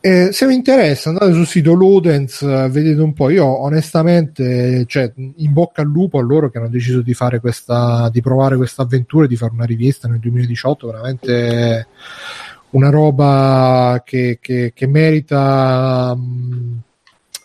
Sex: male